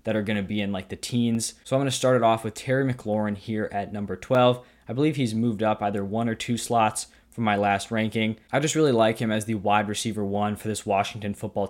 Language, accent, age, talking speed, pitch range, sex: English, American, 20-39, 250 wpm, 105-125 Hz, male